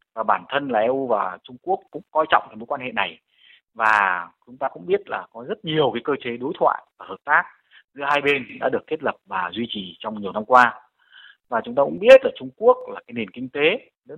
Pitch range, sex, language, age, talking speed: 115-170 Hz, male, Vietnamese, 20-39, 260 wpm